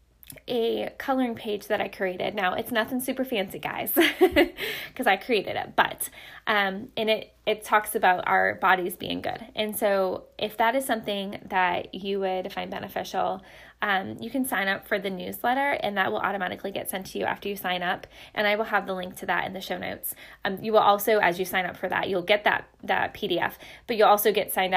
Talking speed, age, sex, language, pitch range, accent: 220 wpm, 10-29, female, English, 195-230 Hz, American